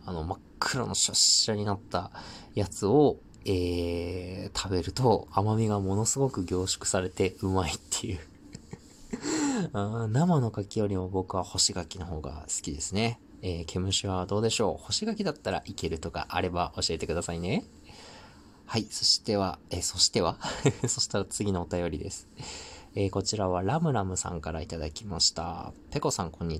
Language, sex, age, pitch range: Japanese, male, 20-39, 90-115 Hz